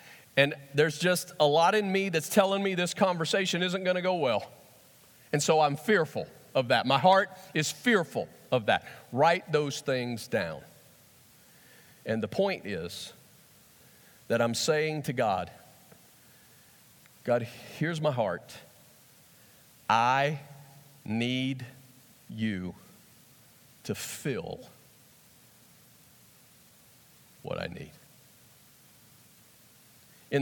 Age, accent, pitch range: 40-59, American, 140-205 Hz